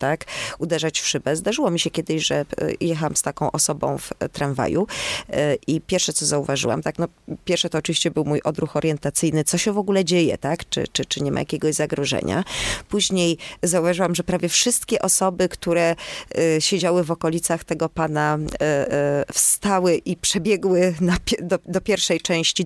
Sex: female